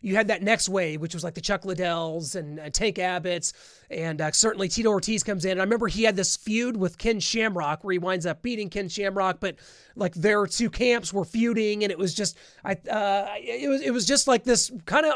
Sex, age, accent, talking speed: male, 30-49, American, 240 wpm